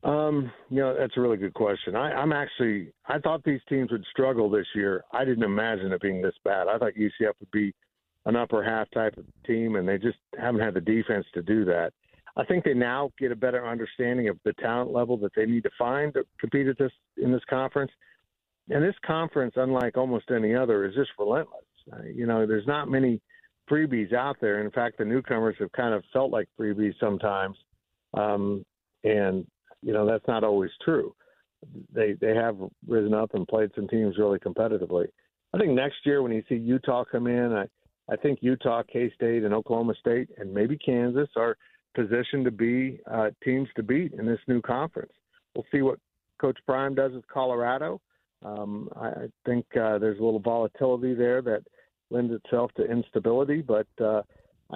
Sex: male